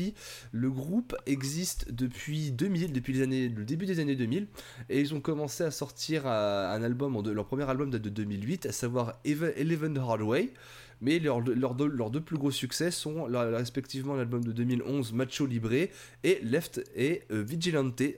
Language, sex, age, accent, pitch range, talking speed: French, male, 20-39, French, 115-145 Hz, 170 wpm